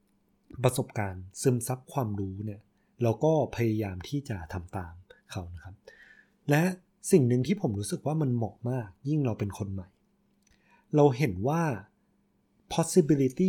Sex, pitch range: male, 105-150 Hz